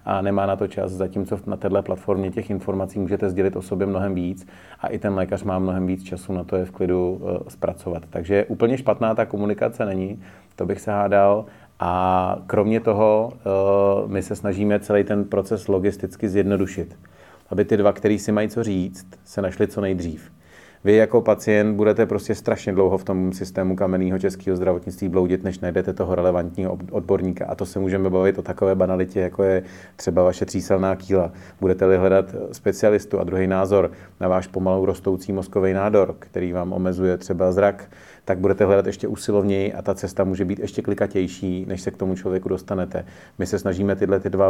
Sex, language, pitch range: male, Czech, 95-100 Hz